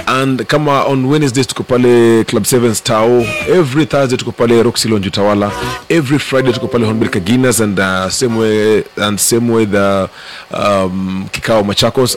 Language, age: English, 30-49